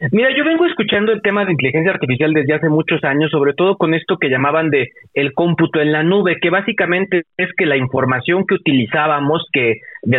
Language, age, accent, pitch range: Spanish, 40-59, Mexican, 155-195 Hz